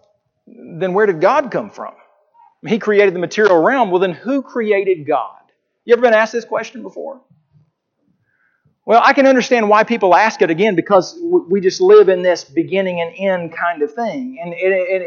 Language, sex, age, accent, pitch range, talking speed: English, male, 40-59, American, 185-250 Hz, 185 wpm